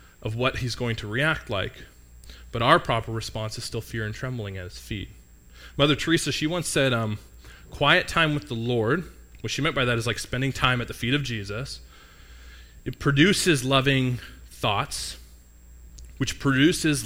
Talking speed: 175 wpm